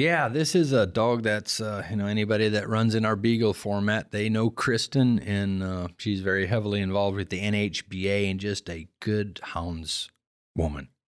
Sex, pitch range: male, 95-105 Hz